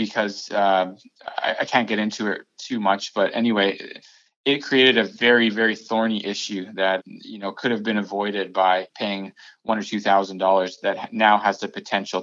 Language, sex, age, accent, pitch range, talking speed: English, male, 20-39, American, 95-115 Hz, 180 wpm